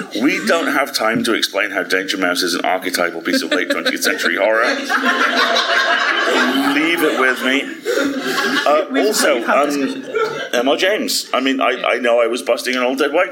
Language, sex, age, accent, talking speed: English, male, 40-59, British, 175 wpm